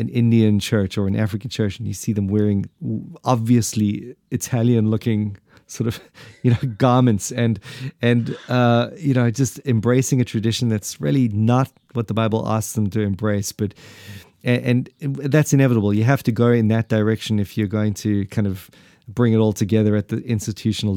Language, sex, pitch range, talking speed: English, male, 105-125 Hz, 185 wpm